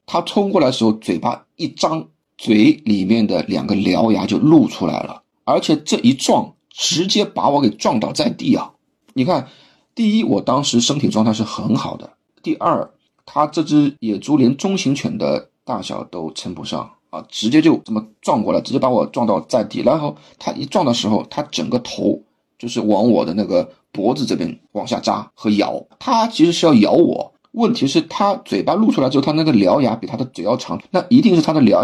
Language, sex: Chinese, male